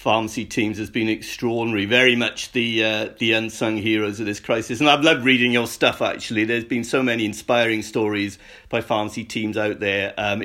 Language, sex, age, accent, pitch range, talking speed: English, male, 50-69, British, 110-160 Hz, 195 wpm